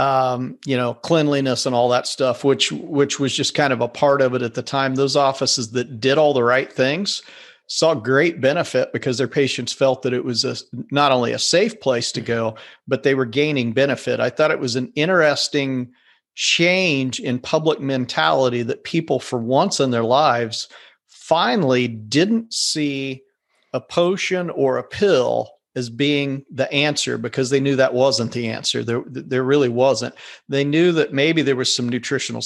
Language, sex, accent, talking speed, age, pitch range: English, male, American, 185 wpm, 40-59, 125-145 Hz